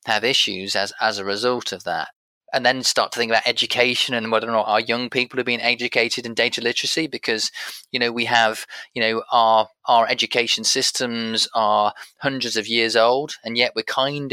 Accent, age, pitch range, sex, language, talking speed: British, 20-39, 110-130 Hz, male, English, 200 wpm